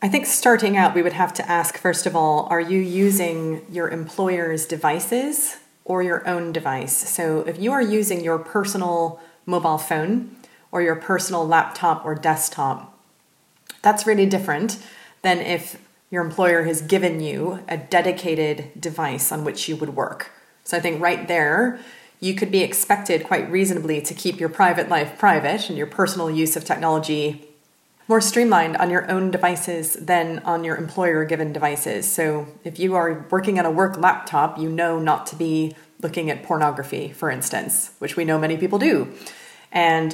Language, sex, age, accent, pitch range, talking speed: English, female, 30-49, American, 160-190 Hz, 170 wpm